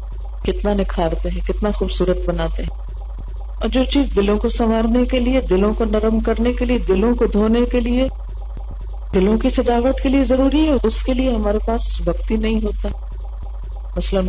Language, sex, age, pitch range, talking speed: Urdu, female, 50-69, 175-235 Hz, 175 wpm